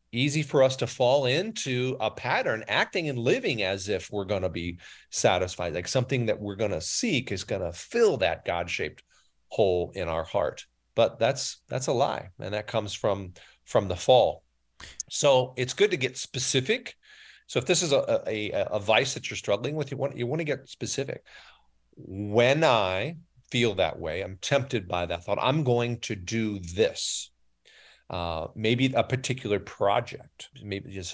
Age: 40-59